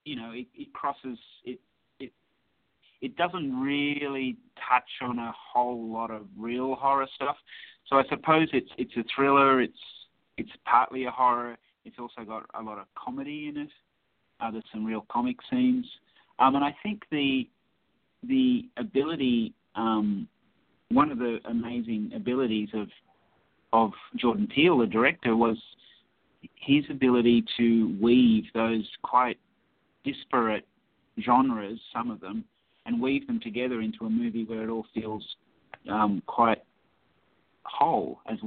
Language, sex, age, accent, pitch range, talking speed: English, male, 30-49, Australian, 110-140 Hz, 145 wpm